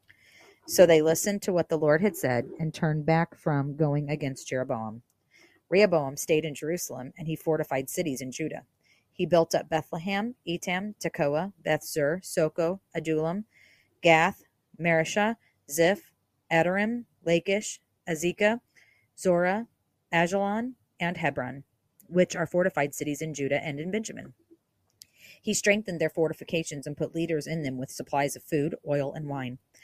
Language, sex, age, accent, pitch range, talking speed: English, female, 40-59, American, 145-180 Hz, 140 wpm